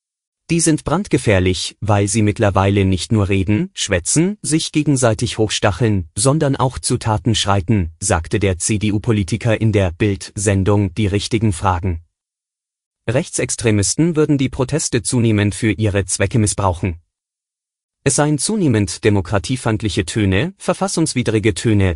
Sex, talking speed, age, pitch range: male, 120 wpm, 30-49, 100-130 Hz